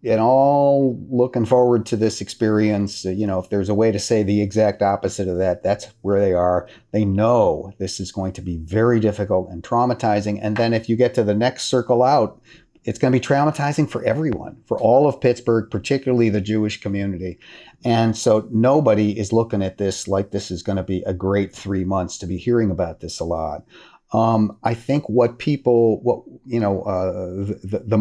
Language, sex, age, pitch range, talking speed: English, male, 40-59, 100-120 Hz, 205 wpm